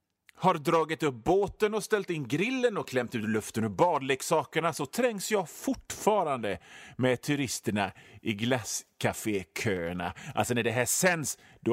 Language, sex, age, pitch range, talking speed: Swedish, male, 30-49, 125-210 Hz, 145 wpm